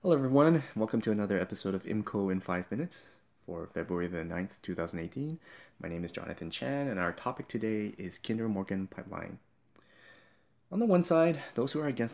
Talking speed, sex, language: 185 wpm, male, English